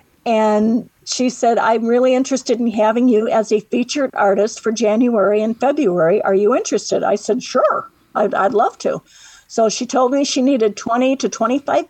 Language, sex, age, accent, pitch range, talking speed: English, female, 50-69, American, 205-245 Hz, 180 wpm